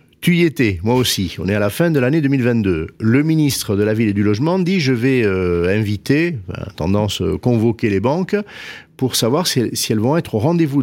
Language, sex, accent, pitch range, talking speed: French, male, French, 115-190 Hz, 225 wpm